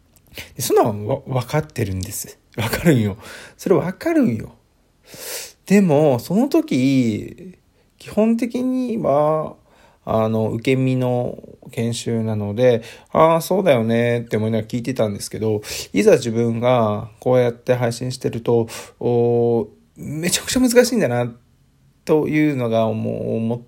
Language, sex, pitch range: Japanese, male, 110-135 Hz